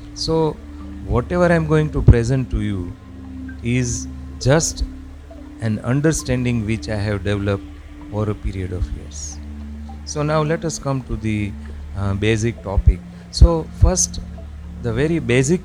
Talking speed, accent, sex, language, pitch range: 140 wpm, native, male, Gujarati, 80-120 Hz